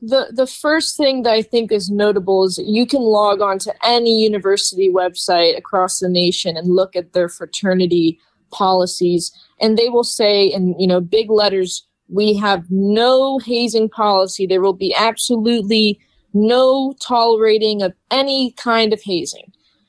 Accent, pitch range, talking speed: American, 185-225 Hz, 155 wpm